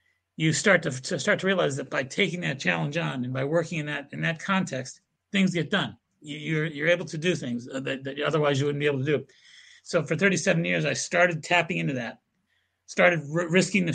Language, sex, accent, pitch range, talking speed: English, male, American, 135-175 Hz, 230 wpm